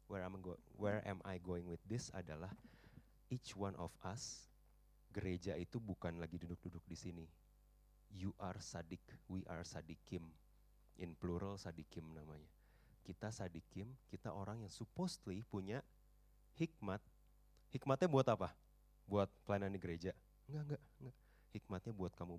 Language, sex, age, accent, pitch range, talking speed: Indonesian, male, 30-49, native, 85-120 Hz, 135 wpm